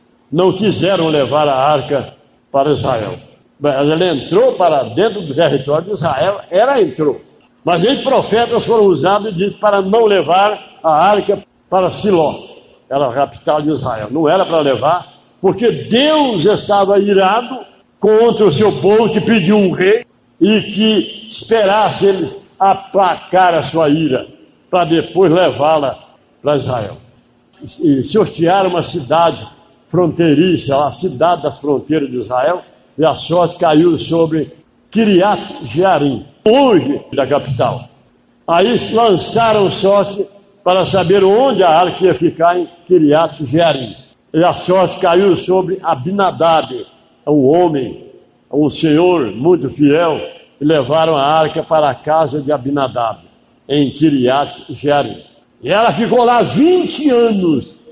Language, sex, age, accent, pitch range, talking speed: Portuguese, male, 60-79, Brazilian, 155-205 Hz, 135 wpm